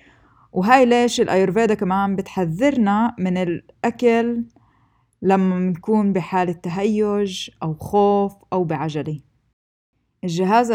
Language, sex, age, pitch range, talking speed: Arabic, female, 20-39, 180-215 Hz, 90 wpm